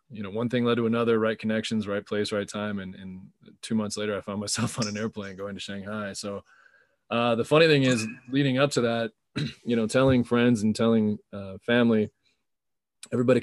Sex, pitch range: male, 100-120 Hz